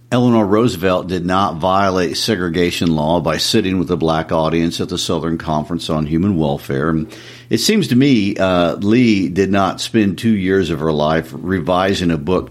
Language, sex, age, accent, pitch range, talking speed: English, male, 50-69, American, 80-110 Hz, 180 wpm